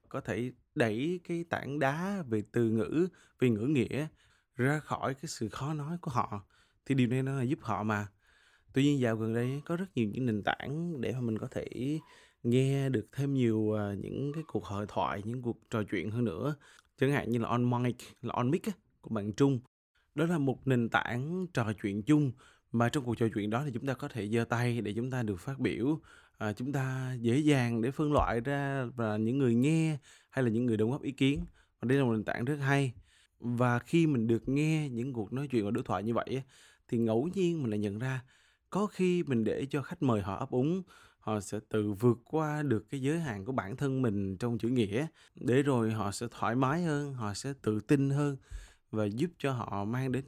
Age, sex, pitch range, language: 20-39, male, 110-140 Hz, Vietnamese